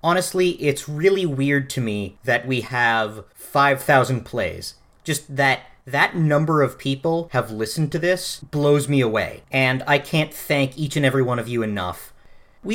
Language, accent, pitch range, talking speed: English, American, 130-185 Hz, 170 wpm